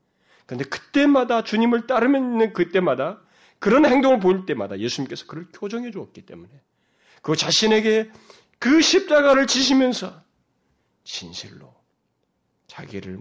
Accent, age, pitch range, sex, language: native, 30-49, 160-265 Hz, male, Korean